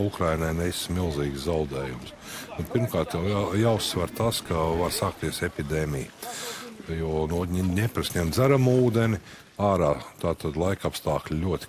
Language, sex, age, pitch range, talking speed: English, male, 50-69, 80-110 Hz, 125 wpm